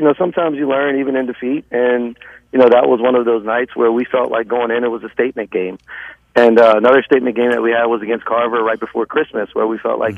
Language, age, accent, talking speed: English, 40-59, American, 270 wpm